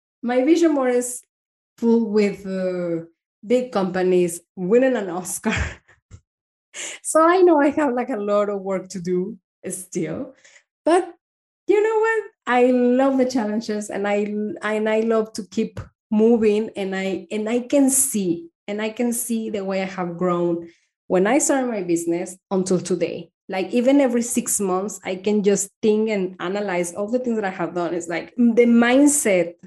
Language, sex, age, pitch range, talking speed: English, female, 20-39, 185-235 Hz, 170 wpm